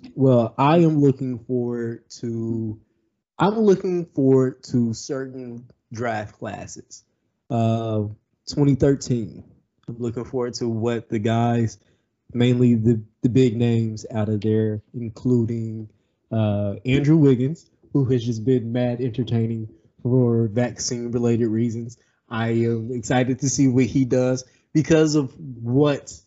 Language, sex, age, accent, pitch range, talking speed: English, male, 20-39, American, 115-135 Hz, 125 wpm